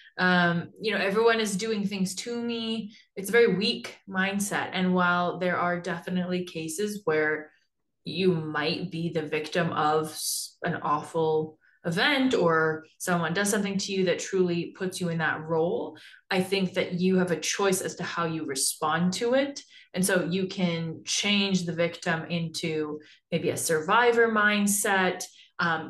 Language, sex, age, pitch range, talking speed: English, female, 20-39, 170-205 Hz, 160 wpm